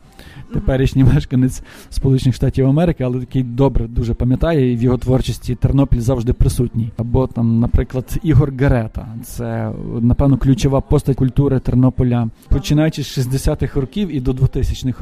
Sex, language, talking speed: male, English, 140 wpm